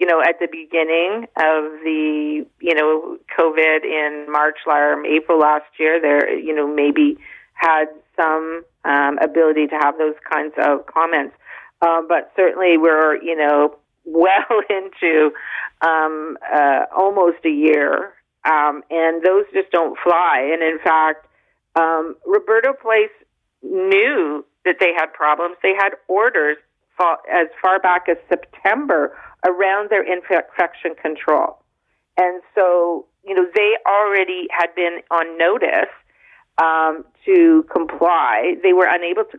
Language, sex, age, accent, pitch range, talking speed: English, female, 50-69, American, 155-190 Hz, 135 wpm